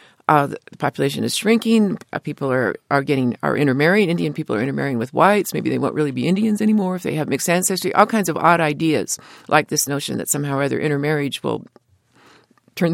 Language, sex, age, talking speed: English, female, 50-69, 215 wpm